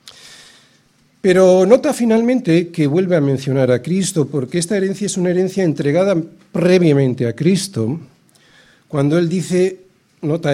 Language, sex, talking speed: Spanish, male, 130 wpm